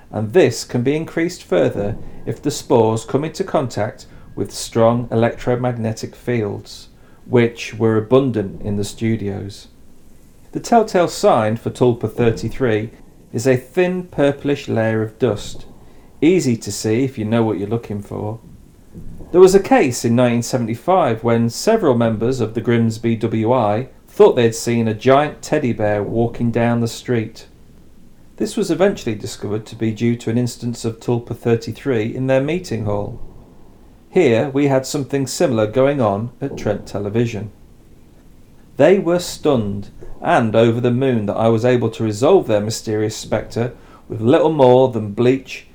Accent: British